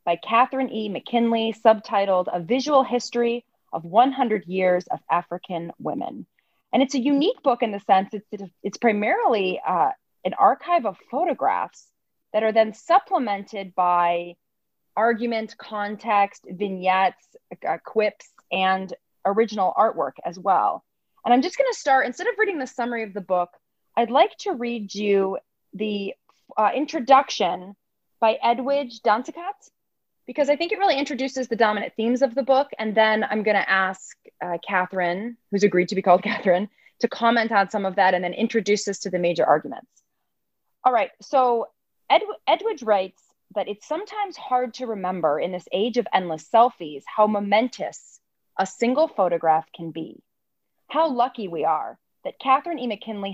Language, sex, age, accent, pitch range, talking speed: English, female, 30-49, American, 190-255 Hz, 160 wpm